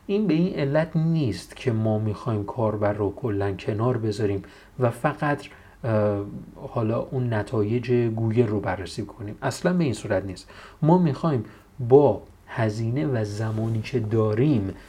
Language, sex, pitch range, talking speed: Persian, male, 105-140 Hz, 140 wpm